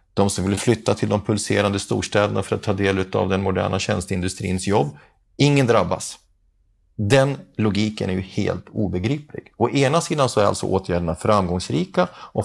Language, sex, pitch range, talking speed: Swedish, male, 95-120 Hz, 165 wpm